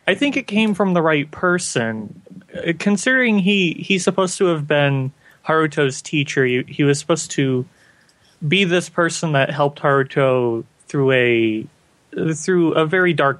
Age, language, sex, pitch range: 20-39, English, male, 140-180 Hz